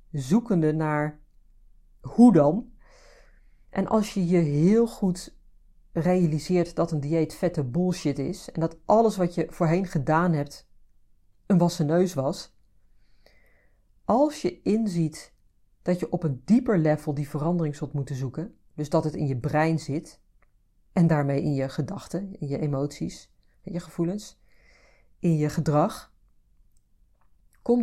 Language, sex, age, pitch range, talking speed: Dutch, female, 40-59, 150-185 Hz, 140 wpm